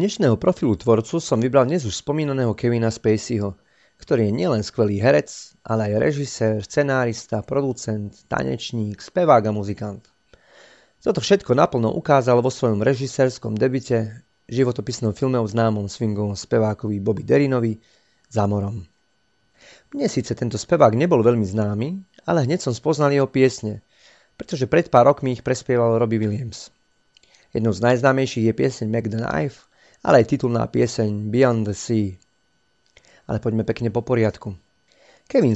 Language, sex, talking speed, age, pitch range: Slovak, male, 135 wpm, 30-49, 110-135 Hz